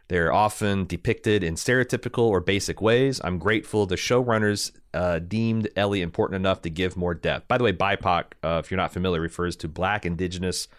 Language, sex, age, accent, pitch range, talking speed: English, male, 30-49, American, 90-115 Hz, 185 wpm